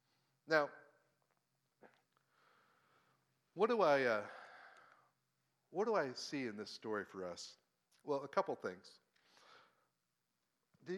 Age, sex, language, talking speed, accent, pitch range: 50-69, male, English, 105 wpm, American, 135-185 Hz